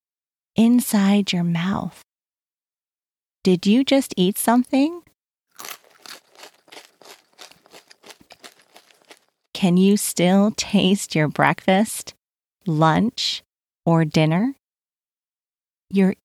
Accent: American